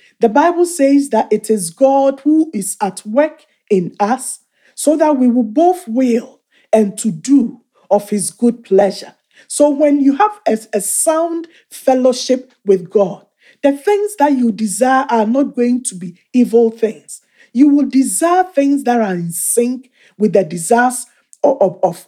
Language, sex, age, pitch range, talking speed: English, male, 50-69, 215-285 Hz, 165 wpm